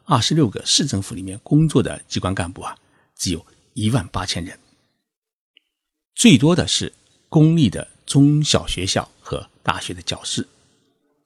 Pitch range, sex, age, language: 90-125 Hz, male, 50-69, Chinese